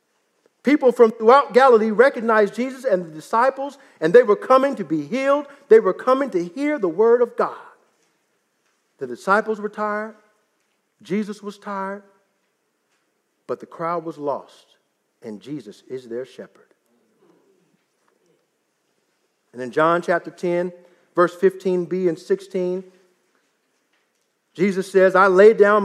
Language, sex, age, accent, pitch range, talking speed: English, male, 50-69, American, 190-295 Hz, 130 wpm